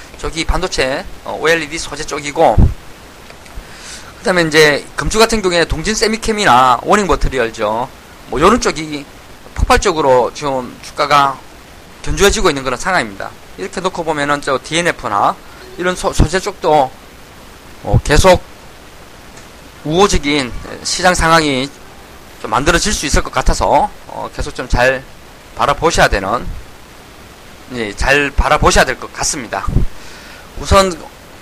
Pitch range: 145-205 Hz